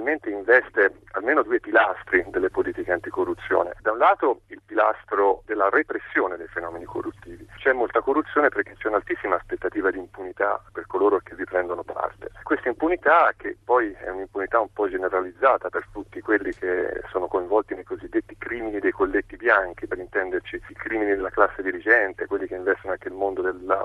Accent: native